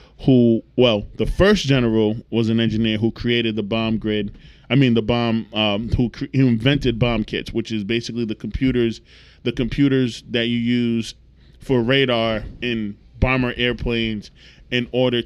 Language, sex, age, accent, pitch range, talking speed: English, male, 20-39, American, 110-130 Hz, 155 wpm